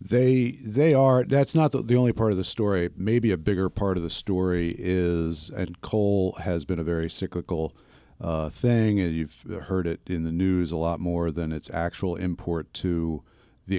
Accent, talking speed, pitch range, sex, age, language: American, 190 wpm, 80-95 Hz, male, 50-69, English